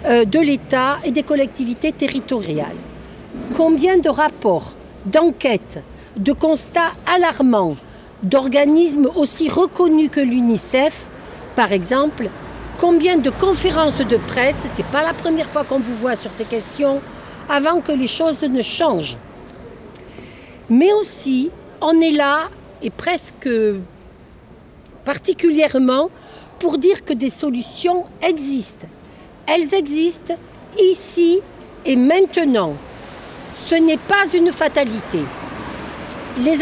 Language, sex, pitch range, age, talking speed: French, female, 250-335 Hz, 60-79, 110 wpm